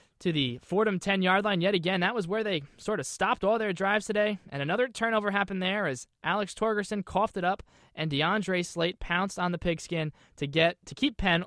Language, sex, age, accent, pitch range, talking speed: English, male, 20-39, American, 155-195 Hz, 215 wpm